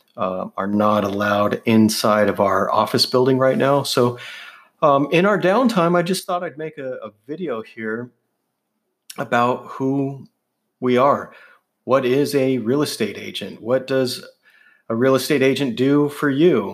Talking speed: 160 wpm